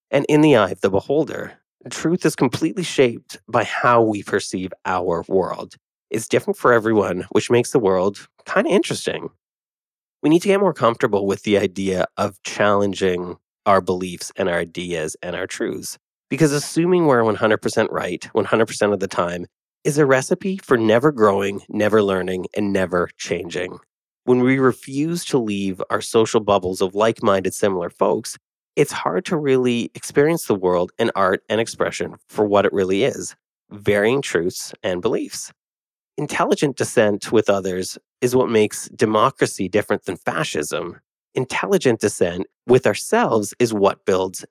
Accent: American